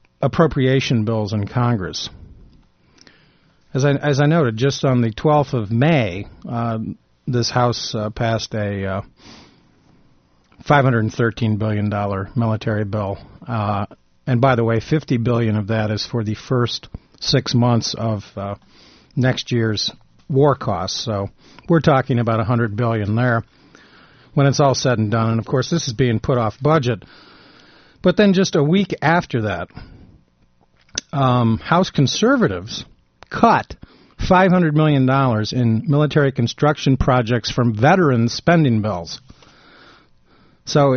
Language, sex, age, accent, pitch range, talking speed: English, male, 50-69, American, 115-145 Hz, 135 wpm